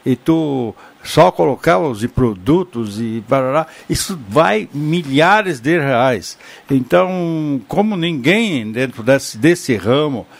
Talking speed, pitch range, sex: 115 wpm, 135-185 Hz, male